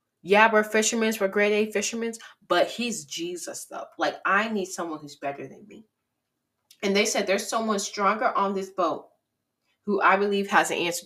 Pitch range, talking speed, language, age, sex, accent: 155-200 Hz, 185 wpm, English, 20-39, female, American